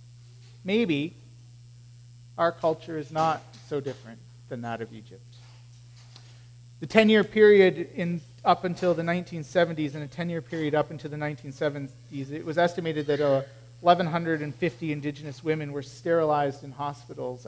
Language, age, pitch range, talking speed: English, 40-59, 125-180 Hz, 130 wpm